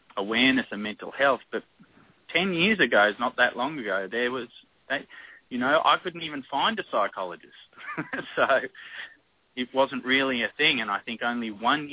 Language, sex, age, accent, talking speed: English, male, 30-49, Australian, 170 wpm